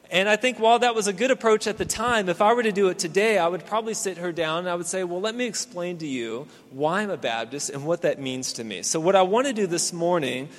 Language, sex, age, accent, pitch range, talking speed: English, male, 30-49, American, 145-195 Hz, 300 wpm